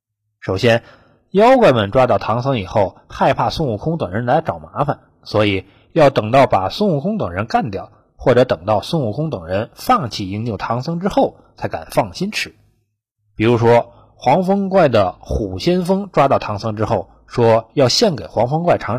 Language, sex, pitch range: Chinese, male, 110-180 Hz